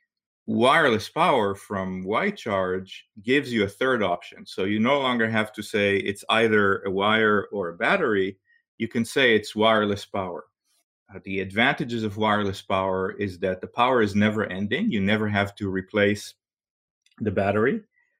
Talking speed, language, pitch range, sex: 165 wpm, English, 100-115 Hz, male